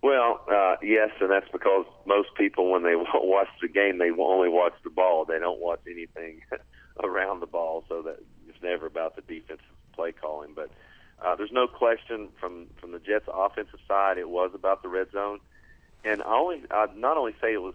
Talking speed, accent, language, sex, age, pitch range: 205 wpm, American, English, male, 40-59, 85-100 Hz